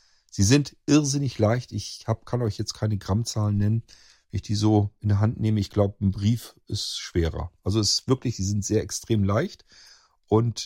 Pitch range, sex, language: 95-125 Hz, male, German